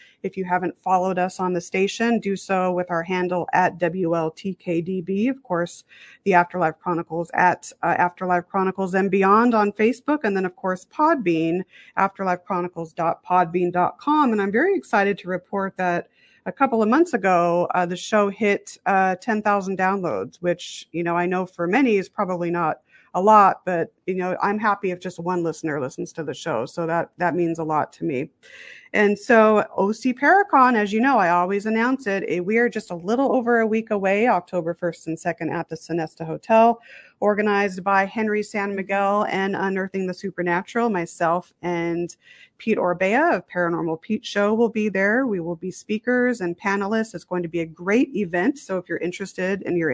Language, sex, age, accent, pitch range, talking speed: English, female, 40-59, American, 175-215 Hz, 185 wpm